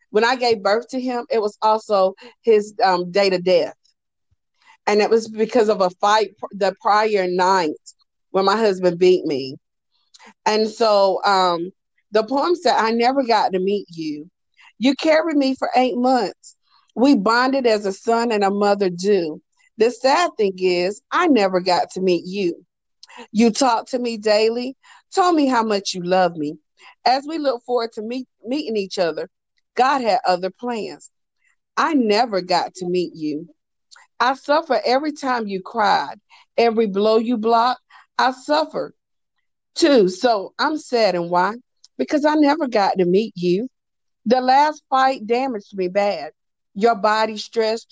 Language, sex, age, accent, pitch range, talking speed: English, female, 40-59, American, 195-255 Hz, 165 wpm